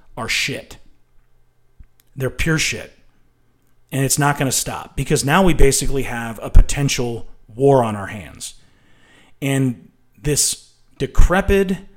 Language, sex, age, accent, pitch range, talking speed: English, male, 30-49, American, 125-160 Hz, 125 wpm